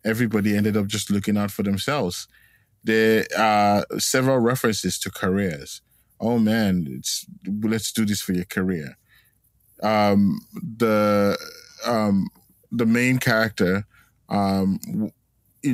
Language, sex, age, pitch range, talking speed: English, male, 20-39, 95-110 Hz, 120 wpm